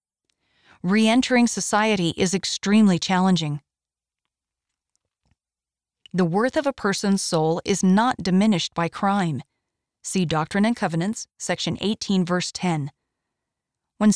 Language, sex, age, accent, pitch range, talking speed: English, female, 40-59, American, 160-205 Hz, 105 wpm